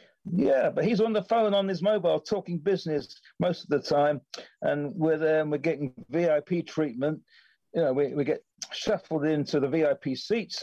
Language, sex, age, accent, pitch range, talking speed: English, male, 50-69, British, 130-165 Hz, 185 wpm